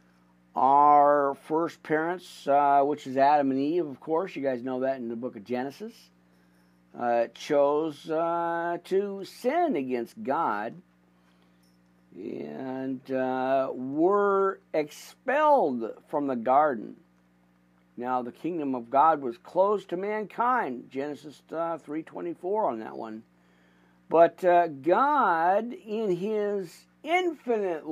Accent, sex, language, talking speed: American, male, English, 115 wpm